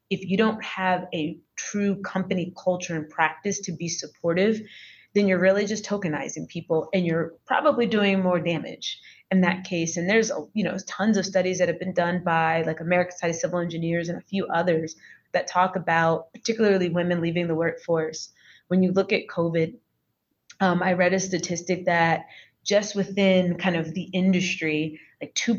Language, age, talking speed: English, 30-49, 180 wpm